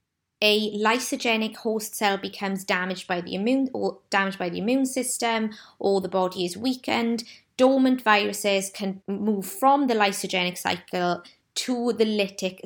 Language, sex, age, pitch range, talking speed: English, female, 20-39, 185-225 Hz, 145 wpm